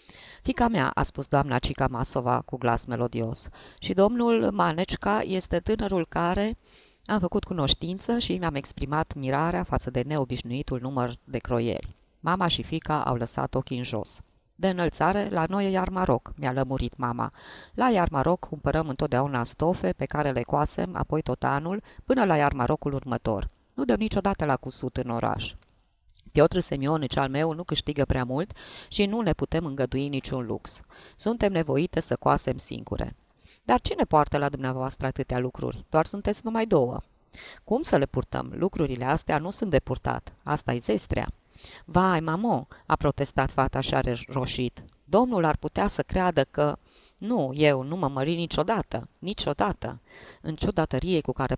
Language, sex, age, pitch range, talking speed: Romanian, female, 20-39, 125-170 Hz, 160 wpm